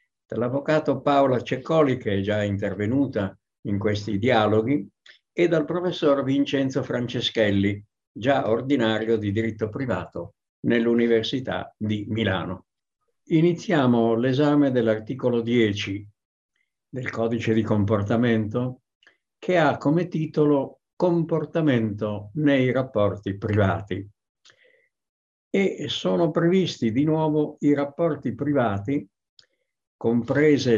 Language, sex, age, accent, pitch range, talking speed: Italian, male, 60-79, native, 105-145 Hz, 95 wpm